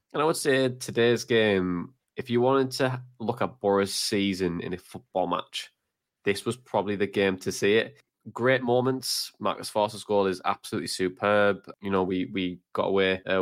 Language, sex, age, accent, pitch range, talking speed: English, male, 20-39, British, 95-115 Hz, 185 wpm